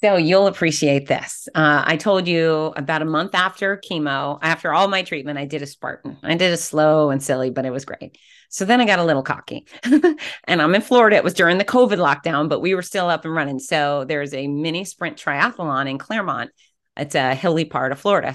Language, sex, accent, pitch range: English, female, American, 150-190 Hz